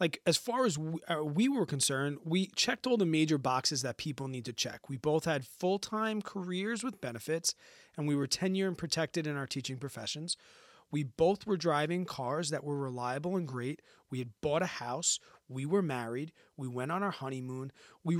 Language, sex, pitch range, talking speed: English, male, 140-185 Hz, 195 wpm